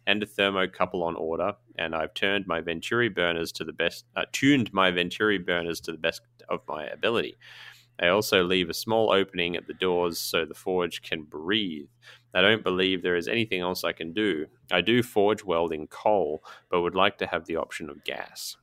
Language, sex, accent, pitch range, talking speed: English, male, Australian, 80-100 Hz, 205 wpm